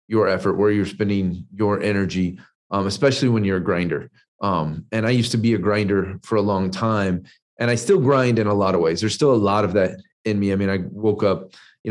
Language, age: English, 30-49